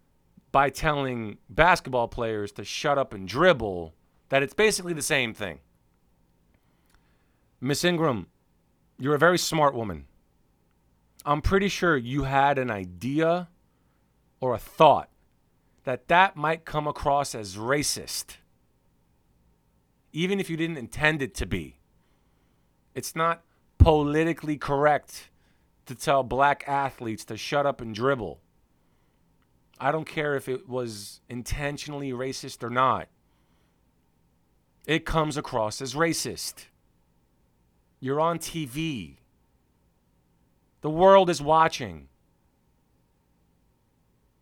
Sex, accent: male, American